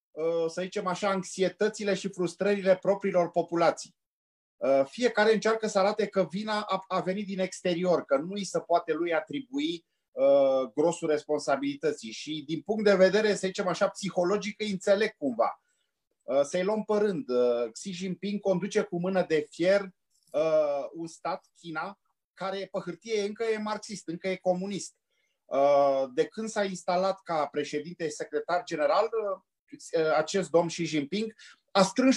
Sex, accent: male, native